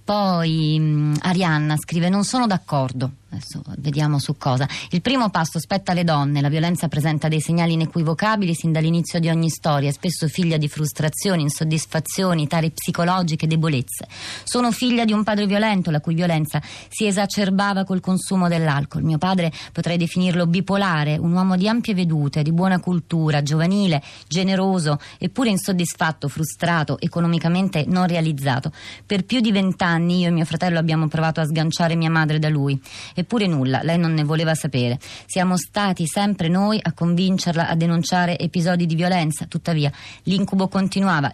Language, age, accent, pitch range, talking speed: Italian, 30-49, native, 150-185 Hz, 155 wpm